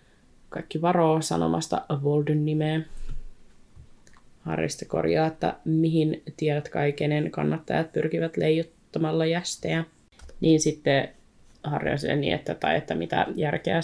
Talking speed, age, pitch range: 110 wpm, 20-39, 145-165 Hz